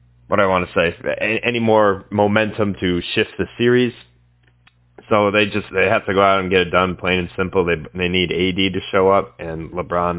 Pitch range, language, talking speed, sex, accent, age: 90-110 Hz, English, 210 wpm, male, American, 20-39